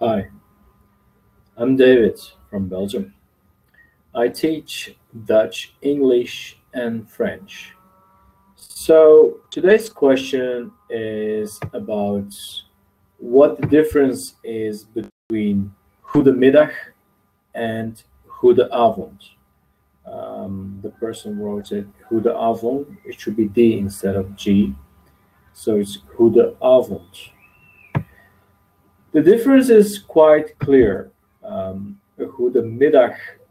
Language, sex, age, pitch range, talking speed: English, male, 40-59, 100-130 Hz, 95 wpm